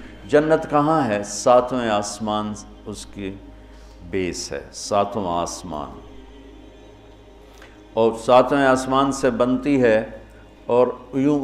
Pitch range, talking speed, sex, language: 100-125 Hz, 100 wpm, male, Urdu